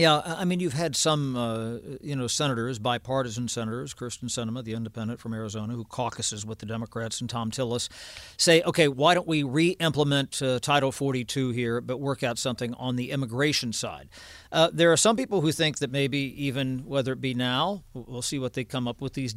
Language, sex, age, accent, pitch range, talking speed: English, male, 50-69, American, 125-150 Hz, 205 wpm